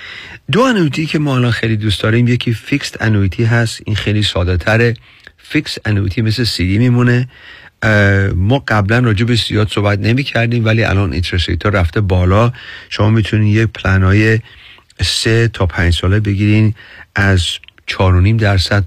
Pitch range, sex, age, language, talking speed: 100-125 Hz, male, 40-59, Persian, 150 wpm